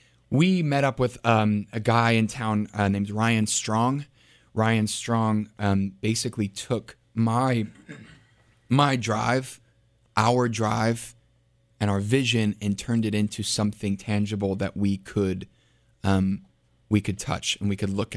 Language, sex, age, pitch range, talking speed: English, male, 20-39, 100-115 Hz, 140 wpm